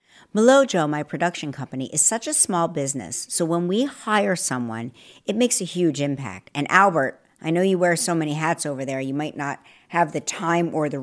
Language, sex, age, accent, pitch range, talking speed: English, female, 50-69, American, 140-200 Hz, 205 wpm